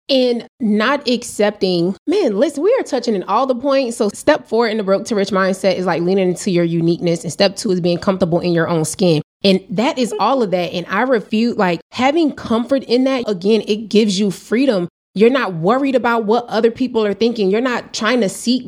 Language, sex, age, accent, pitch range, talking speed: English, female, 20-39, American, 190-240 Hz, 225 wpm